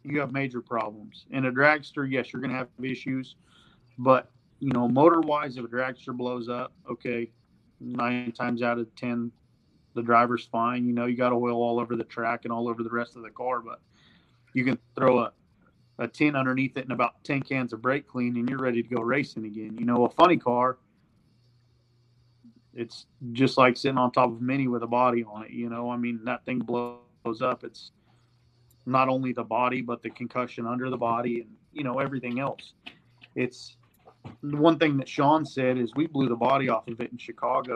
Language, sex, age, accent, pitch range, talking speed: English, male, 40-59, American, 120-130 Hz, 205 wpm